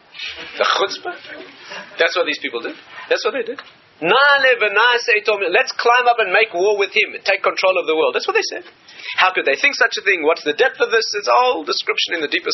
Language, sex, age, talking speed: English, male, 40-59, 235 wpm